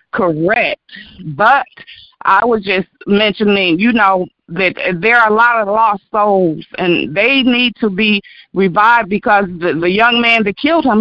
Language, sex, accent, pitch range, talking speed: English, female, American, 185-245 Hz, 165 wpm